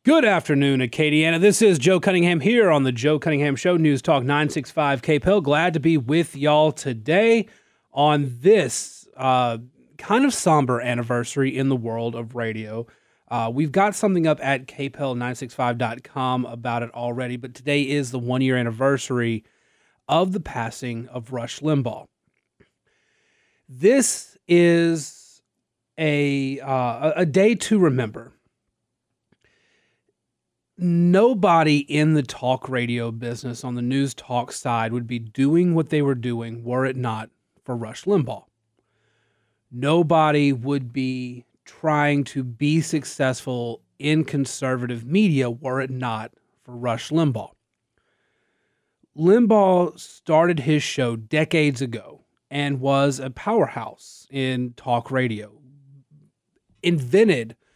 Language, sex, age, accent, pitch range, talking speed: English, male, 30-49, American, 120-155 Hz, 125 wpm